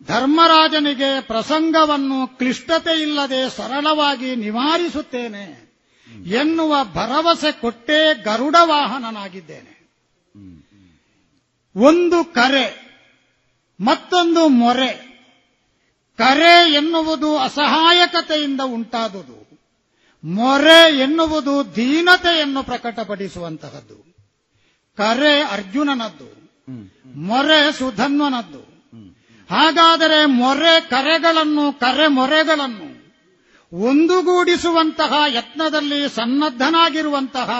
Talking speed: 55 wpm